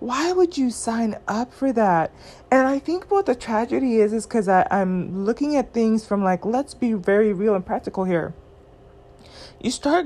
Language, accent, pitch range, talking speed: English, American, 185-240 Hz, 185 wpm